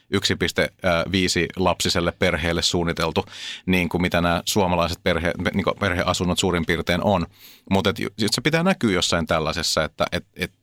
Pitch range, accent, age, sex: 85-100 Hz, native, 30-49, male